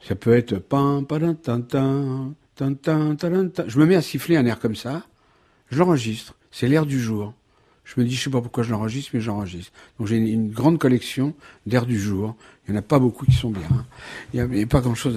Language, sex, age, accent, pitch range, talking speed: French, male, 60-79, French, 100-130 Hz, 205 wpm